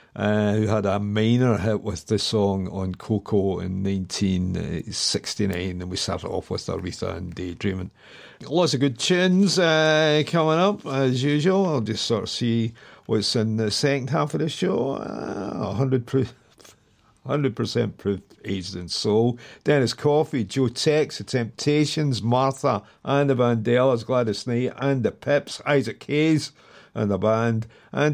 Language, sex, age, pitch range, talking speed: English, male, 50-69, 100-135 Hz, 150 wpm